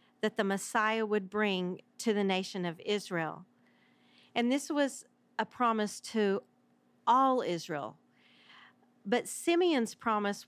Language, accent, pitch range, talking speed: English, American, 190-240 Hz, 120 wpm